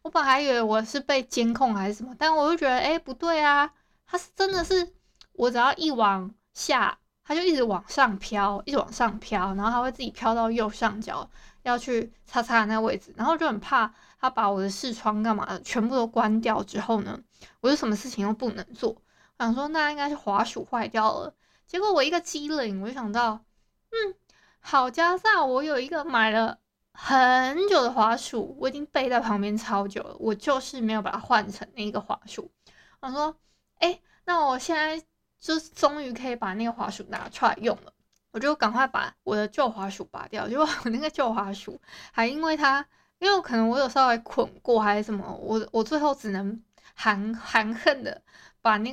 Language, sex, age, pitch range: Chinese, female, 20-39, 220-285 Hz